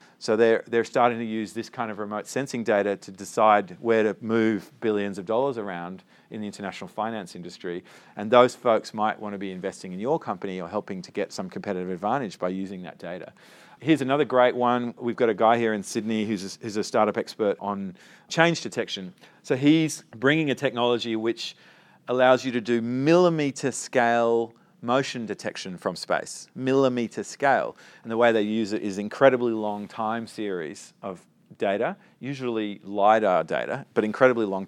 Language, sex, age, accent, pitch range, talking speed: English, male, 40-59, Australian, 105-130 Hz, 180 wpm